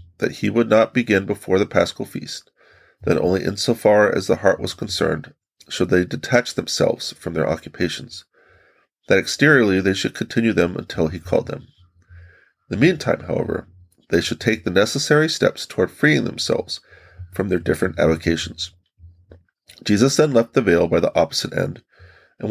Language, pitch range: English, 90-110 Hz